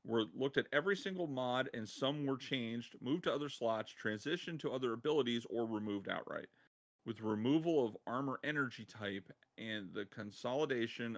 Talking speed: 160 wpm